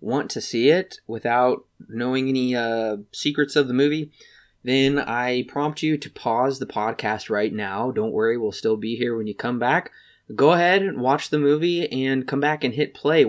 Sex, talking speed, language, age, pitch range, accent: male, 200 wpm, English, 20-39, 110-145 Hz, American